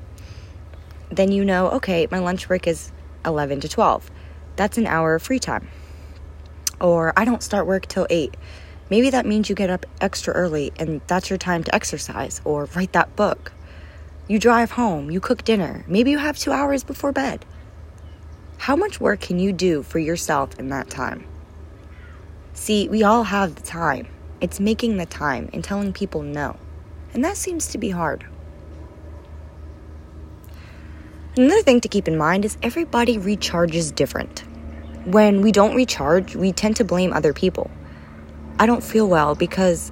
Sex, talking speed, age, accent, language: female, 165 wpm, 20-39, American, English